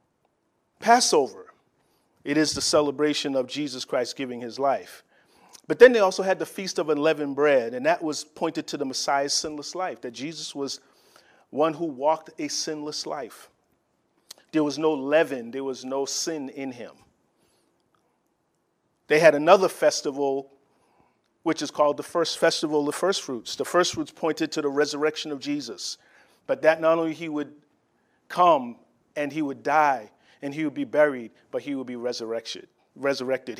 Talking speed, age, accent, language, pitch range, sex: 165 wpm, 40-59, American, English, 140-170 Hz, male